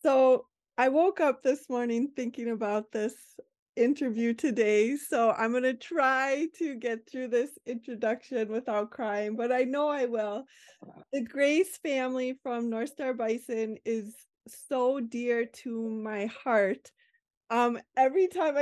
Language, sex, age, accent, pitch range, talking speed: English, female, 20-39, American, 225-275 Hz, 140 wpm